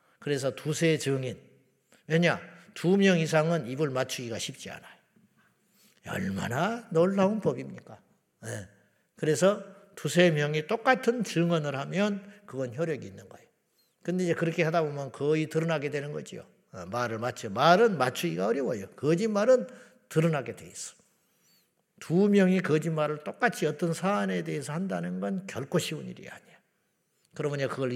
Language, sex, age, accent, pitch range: Korean, male, 50-69, Japanese, 125-185 Hz